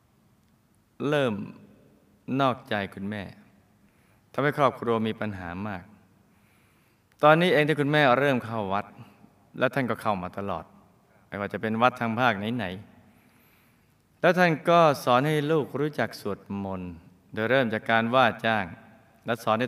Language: Thai